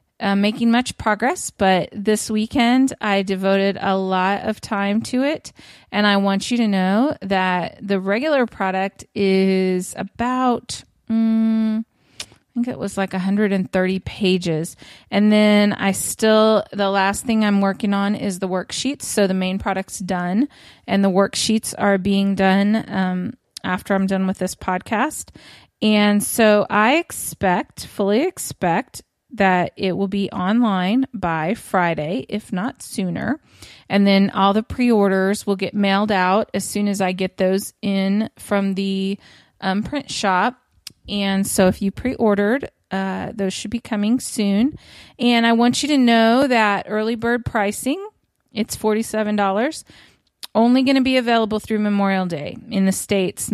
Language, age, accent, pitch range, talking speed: English, 20-39, American, 190-225 Hz, 150 wpm